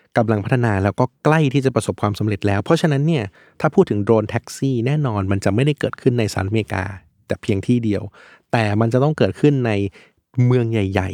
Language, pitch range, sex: Thai, 110-135 Hz, male